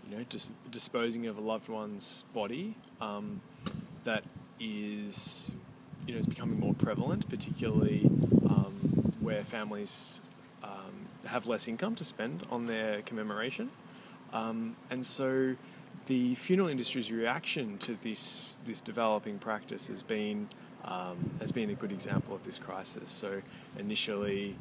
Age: 20-39